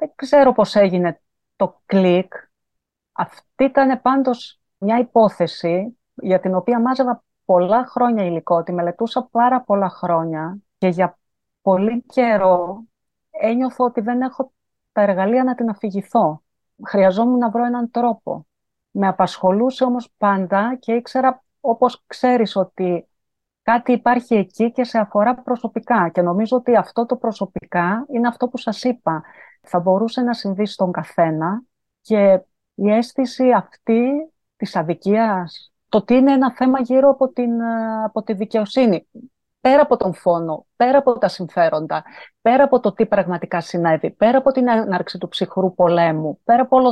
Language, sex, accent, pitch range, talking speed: Greek, female, native, 190-250 Hz, 145 wpm